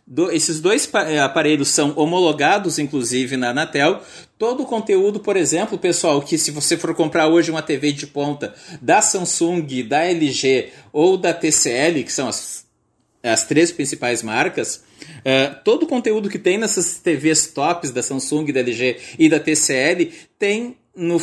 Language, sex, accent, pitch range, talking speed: Portuguese, male, Brazilian, 145-205 Hz, 160 wpm